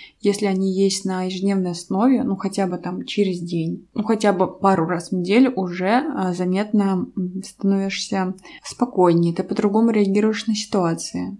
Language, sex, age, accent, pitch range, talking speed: Russian, female, 20-39, native, 185-215 Hz, 145 wpm